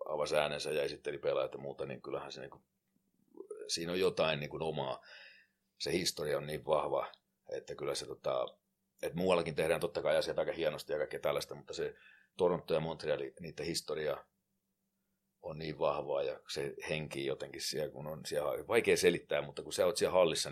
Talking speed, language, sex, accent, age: 180 wpm, Finnish, male, native, 40-59